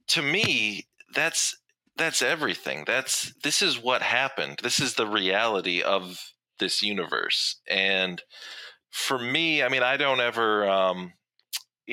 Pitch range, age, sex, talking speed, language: 95-120 Hz, 40-59, male, 130 wpm, English